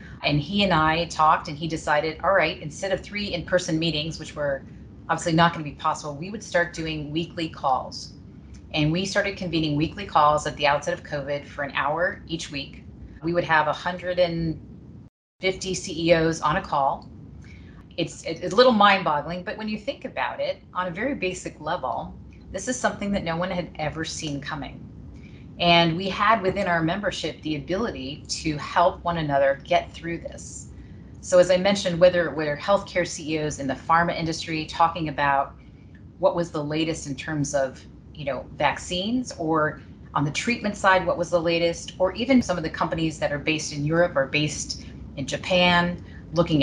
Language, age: English, 30-49